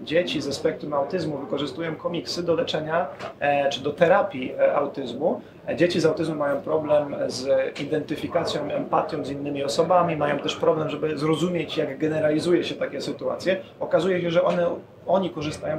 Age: 30-49